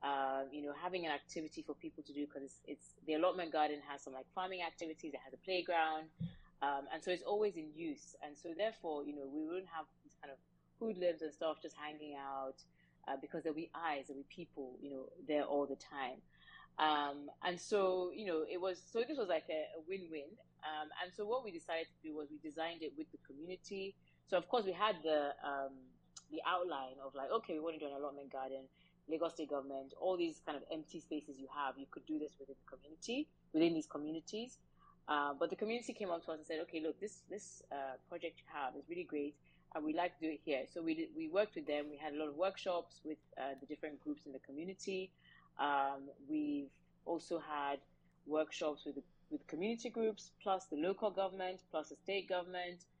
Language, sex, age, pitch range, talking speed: English, female, 30-49, 145-180 Hz, 230 wpm